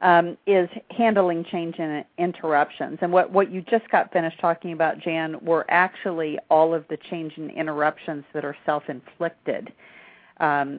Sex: female